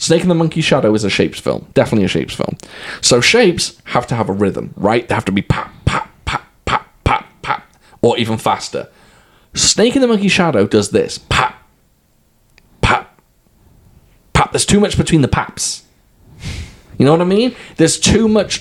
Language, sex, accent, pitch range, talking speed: English, male, British, 110-165 Hz, 185 wpm